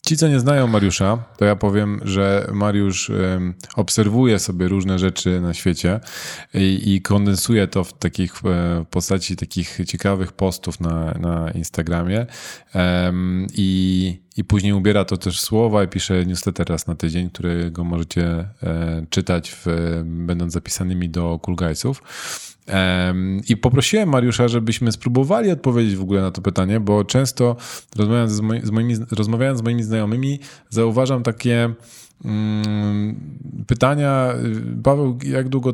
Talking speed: 135 wpm